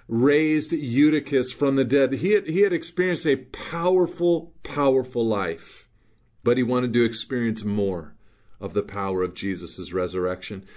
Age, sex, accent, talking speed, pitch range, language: 40-59, male, American, 140 wpm, 110-135 Hz, English